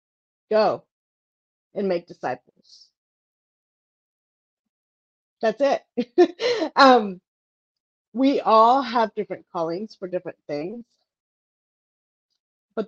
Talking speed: 75 wpm